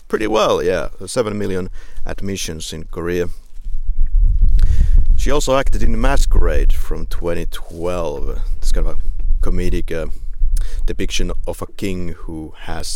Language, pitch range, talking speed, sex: English, 80-95 Hz, 125 wpm, male